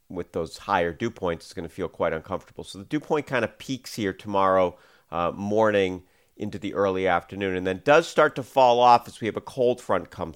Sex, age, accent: male, 40-59, American